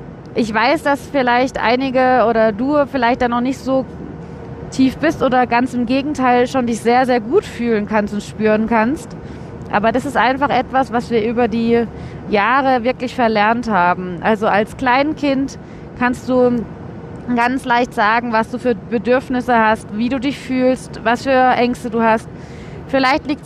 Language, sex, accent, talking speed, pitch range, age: German, female, German, 165 wpm, 225-265 Hz, 30-49